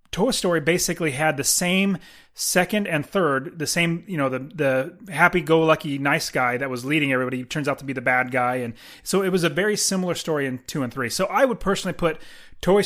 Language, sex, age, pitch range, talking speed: English, male, 30-49, 130-165 Hz, 230 wpm